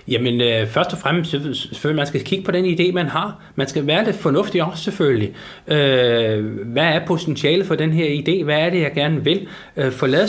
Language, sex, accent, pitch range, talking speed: Danish, male, native, 135-185 Hz, 200 wpm